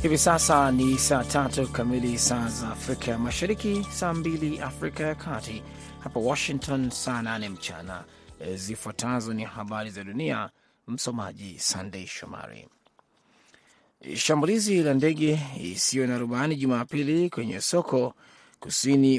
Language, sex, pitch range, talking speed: Swahili, male, 120-155 Hz, 115 wpm